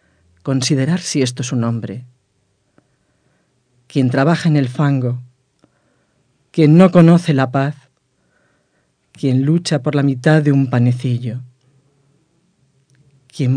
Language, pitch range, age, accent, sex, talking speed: English, 130-155 Hz, 40-59, Spanish, female, 110 wpm